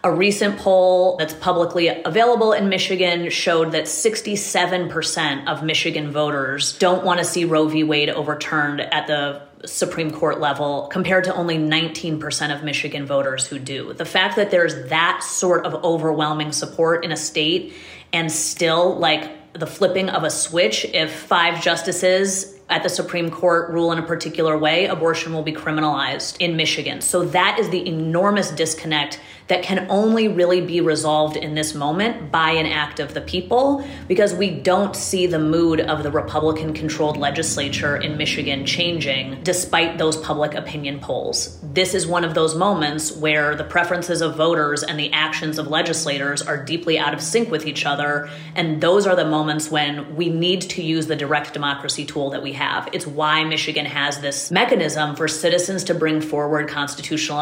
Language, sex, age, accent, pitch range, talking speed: English, female, 30-49, American, 150-175 Hz, 170 wpm